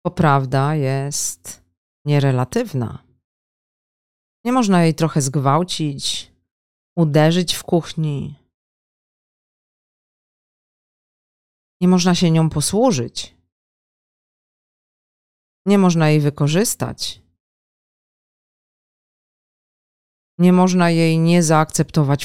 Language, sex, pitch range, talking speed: Polish, female, 130-180 Hz, 70 wpm